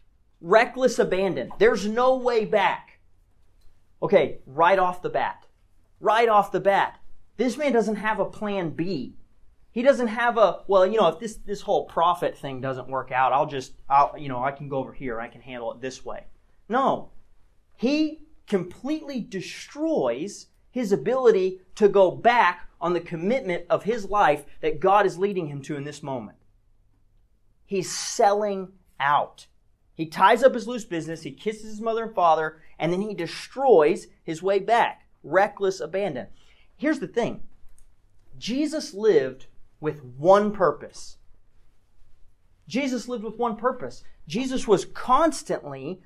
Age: 30-49